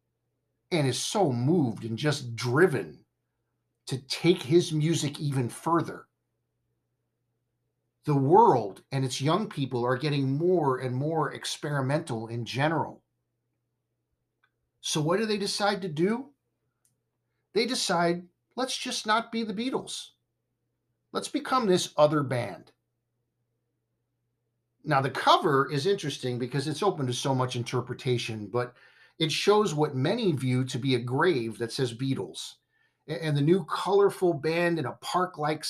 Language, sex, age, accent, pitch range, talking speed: English, male, 50-69, American, 120-160 Hz, 135 wpm